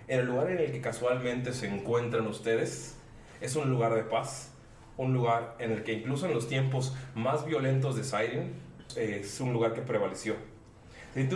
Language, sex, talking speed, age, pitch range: Spanish, male, 175 wpm, 30-49, 115-140 Hz